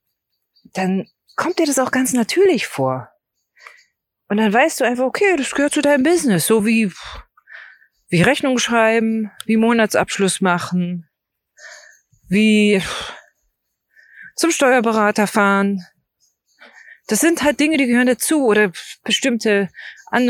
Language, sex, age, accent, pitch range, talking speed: German, female, 30-49, German, 190-255 Hz, 120 wpm